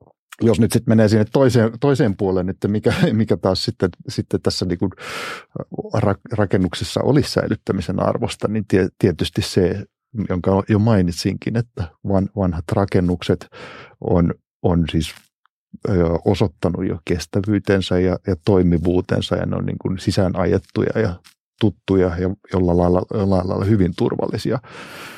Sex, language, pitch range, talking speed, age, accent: male, Finnish, 90-105 Hz, 115 wpm, 50-69, native